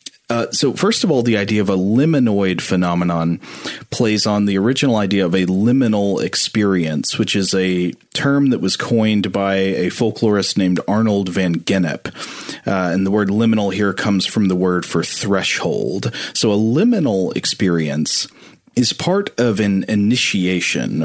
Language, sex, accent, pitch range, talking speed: English, male, American, 95-115 Hz, 155 wpm